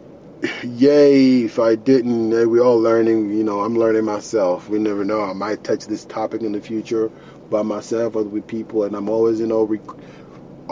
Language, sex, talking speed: English, male, 190 wpm